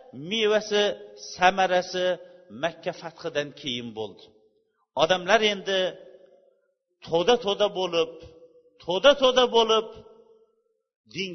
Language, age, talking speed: Bulgarian, 50-69, 80 wpm